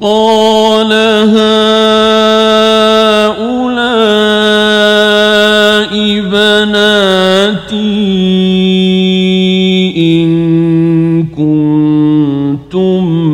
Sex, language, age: male, Arabic, 50-69